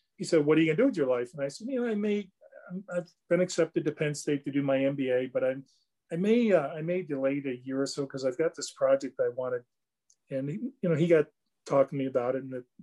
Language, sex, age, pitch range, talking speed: English, male, 40-59, 130-160 Hz, 285 wpm